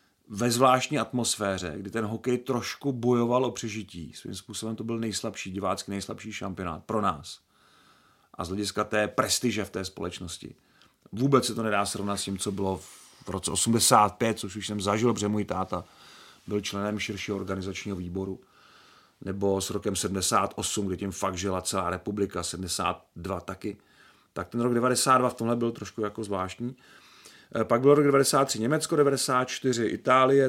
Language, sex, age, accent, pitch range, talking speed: Czech, male, 40-59, native, 105-140 Hz, 160 wpm